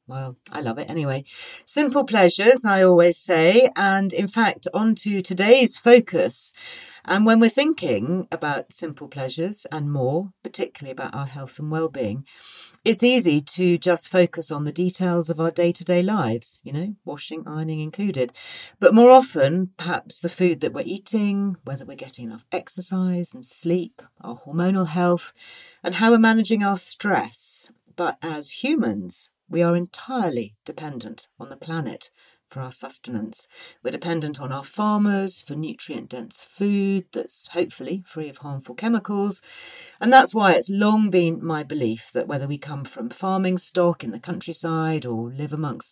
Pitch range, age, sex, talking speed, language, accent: 150-205 Hz, 40-59, female, 160 wpm, English, British